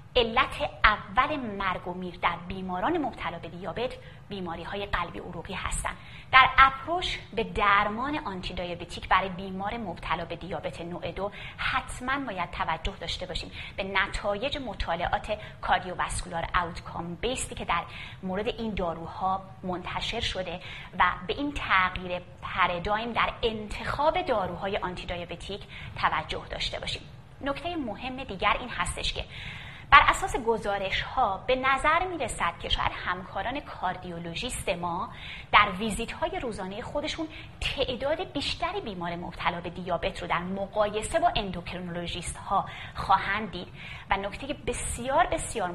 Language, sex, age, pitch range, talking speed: Persian, female, 30-49, 175-255 Hz, 130 wpm